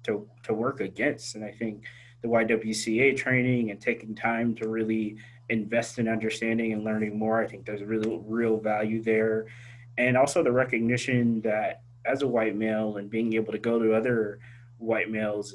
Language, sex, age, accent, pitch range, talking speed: English, male, 20-39, American, 110-125 Hz, 180 wpm